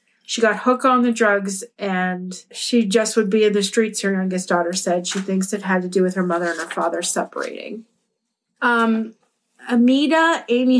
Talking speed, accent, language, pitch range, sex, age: 190 wpm, American, English, 185-230 Hz, female, 30-49